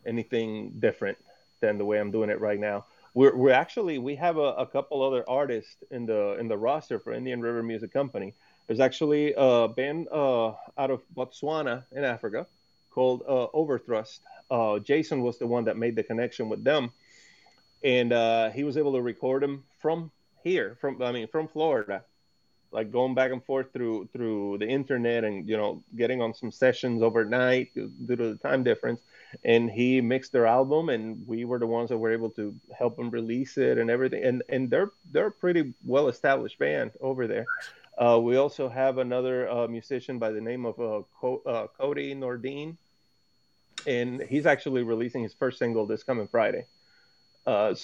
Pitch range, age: 115-135 Hz, 30-49